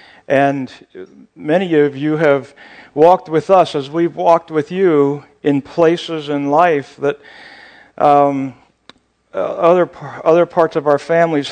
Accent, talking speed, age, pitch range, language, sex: American, 130 wpm, 50-69, 140-170 Hz, English, male